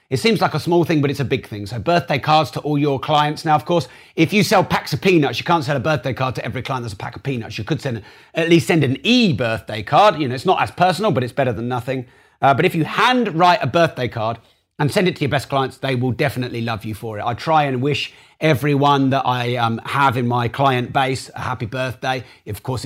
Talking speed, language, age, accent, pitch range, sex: 265 wpm, English, 30-49, British, 120-150 Hz, male